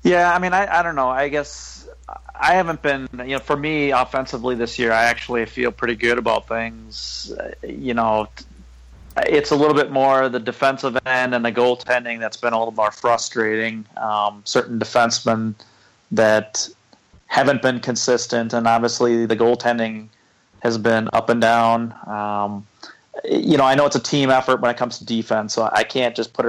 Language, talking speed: English, 185 wpm